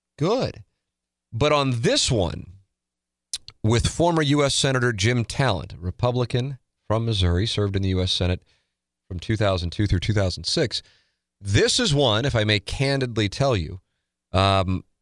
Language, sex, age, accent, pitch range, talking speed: English, male, 30-49, American, 85-110 Hz, 130 wpm